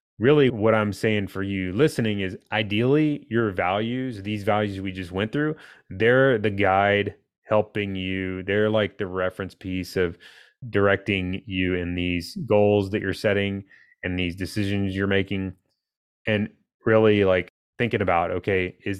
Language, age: English, 30-49